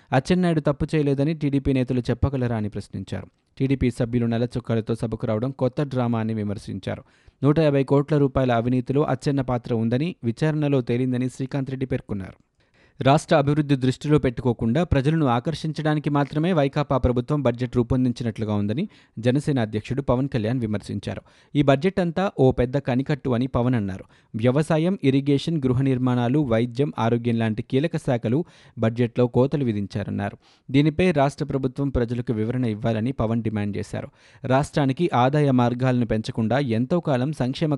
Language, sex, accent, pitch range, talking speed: Telugu, male, native, 120-145 Hz, 130 wpm